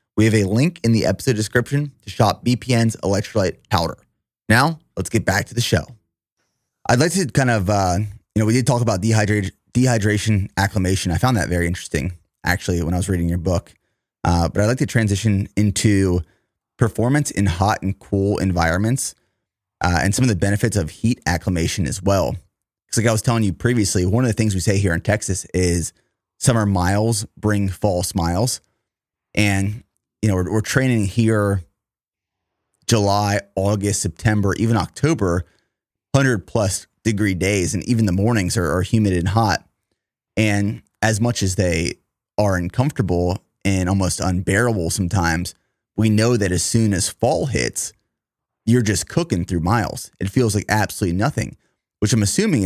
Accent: American